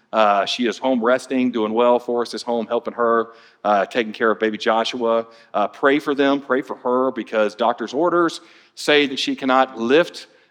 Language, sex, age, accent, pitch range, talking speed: English, male, 40-59, American, 110-130 Hz, 190 wpm